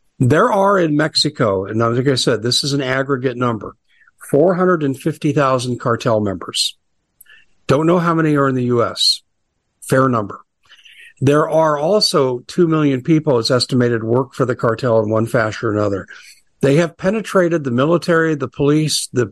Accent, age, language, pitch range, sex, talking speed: American, 50-69, English, 120-155 Hz, male, 160 wpm